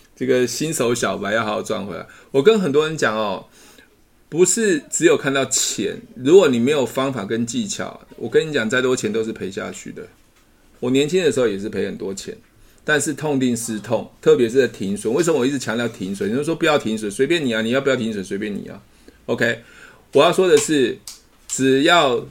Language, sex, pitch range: Chinese, male, 110-150 Hz